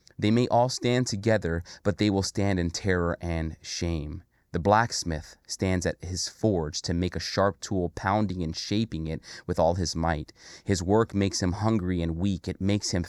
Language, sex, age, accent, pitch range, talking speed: English, male, 30-49, American, 90-115 Hz, 195 wpm